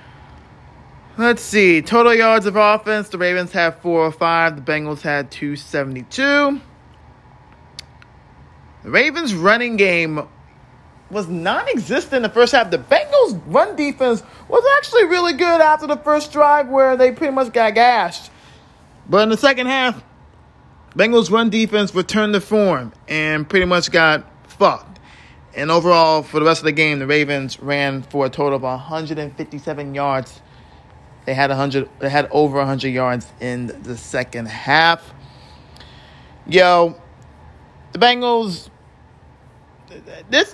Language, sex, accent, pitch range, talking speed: English, male, American, 145-220 Hz, 140 wpm